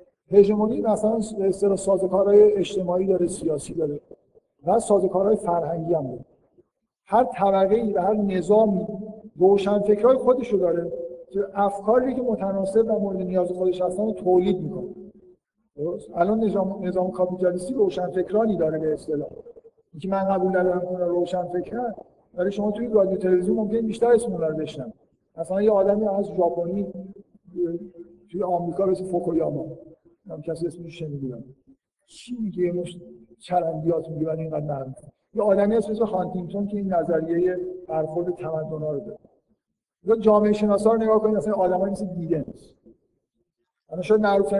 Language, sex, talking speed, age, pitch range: Persian, male, 120 wpm, 50-69, 175-210 Hz